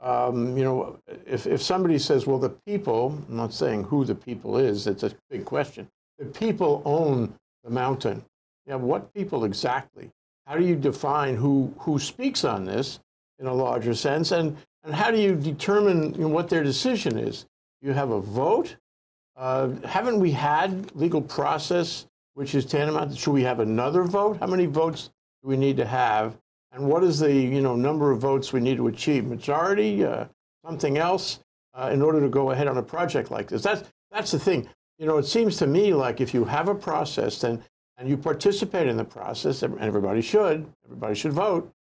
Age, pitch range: 60-79, 130-170 Hz